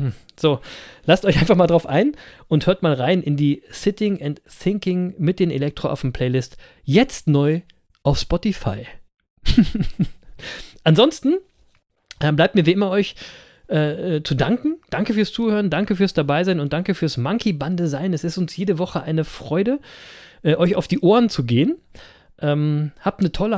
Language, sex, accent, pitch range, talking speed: German, male, German, 145-190 Hz, 165 wpm